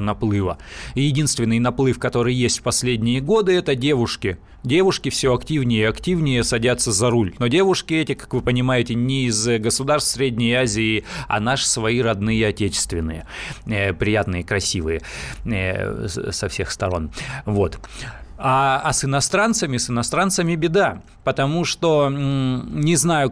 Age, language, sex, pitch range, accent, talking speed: 30-49, Russian, male, 110-140 Hz, native, 135 wpm